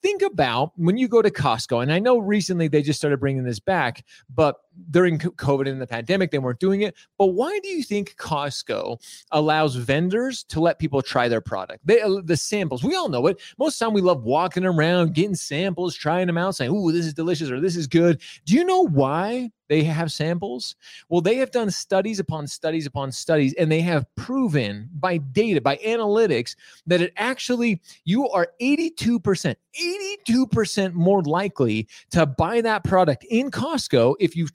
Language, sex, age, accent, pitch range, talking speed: English, male, 30-49, American, 155-215 Hz, 195 wpm